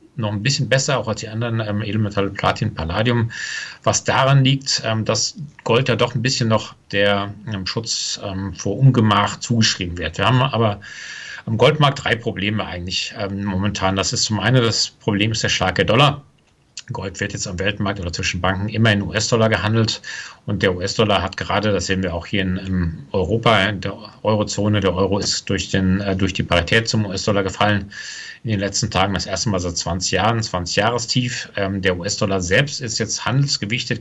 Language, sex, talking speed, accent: German, male, 190 wpm, German